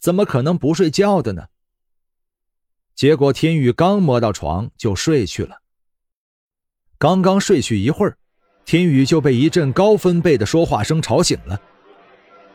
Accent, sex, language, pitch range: native, male, Chinese, 95-145 Hz